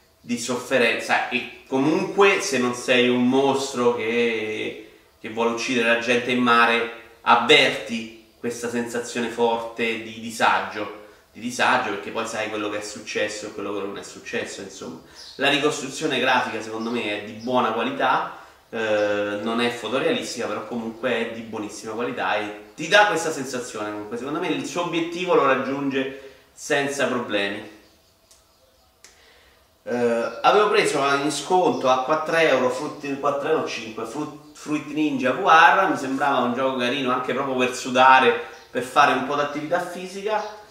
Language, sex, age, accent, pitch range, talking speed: Italian, male, 30-49, native, 115-140 Hz, 155 wpm